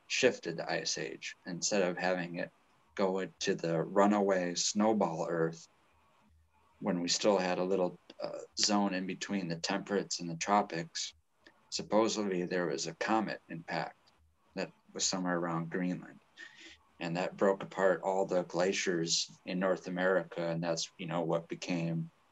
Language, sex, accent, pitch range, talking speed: English, male, American, 85-95 Hz, 150 wpm